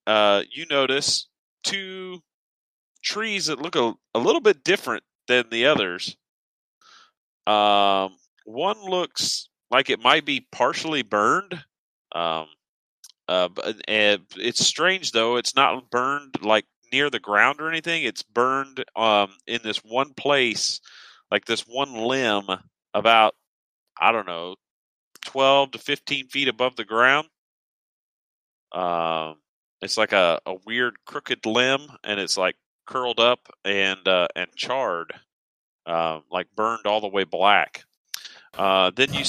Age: 40-59